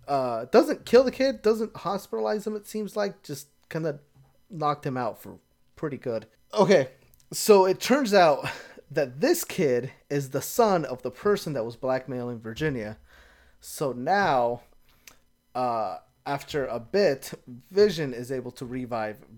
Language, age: English, 20-39